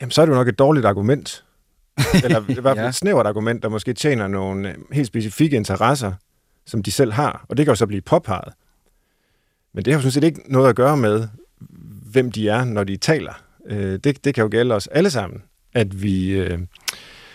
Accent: native